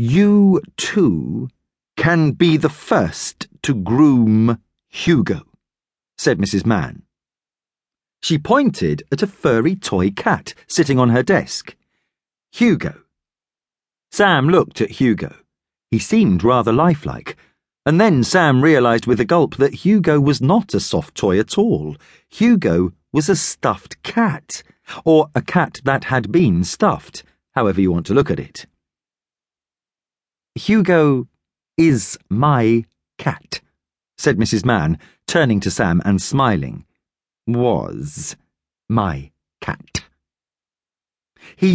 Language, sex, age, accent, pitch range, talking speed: English, male, 40-59, British, 110-170 Hz, 120 wpm